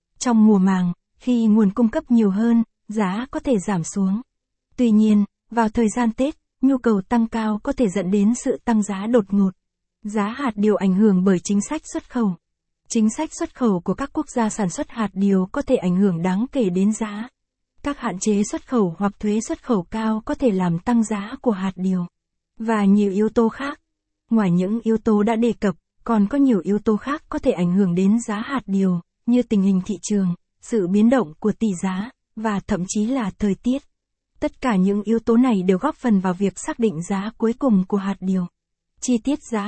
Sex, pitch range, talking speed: female, 200-240 Hz, 220 wpm